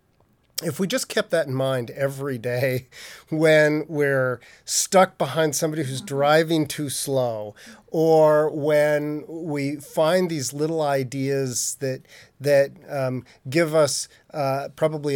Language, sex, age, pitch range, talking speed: English, male, 40-59, 130-155 Hz, 125 wpm